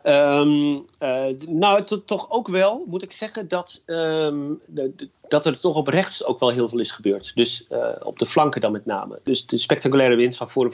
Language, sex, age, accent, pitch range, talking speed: Dutch, male, 40-59, Dutch, 120-150 Hz, 190 wpm